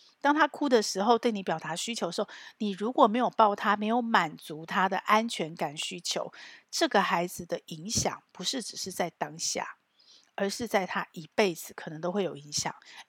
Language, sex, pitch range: Chinese, female, 170-230 Hz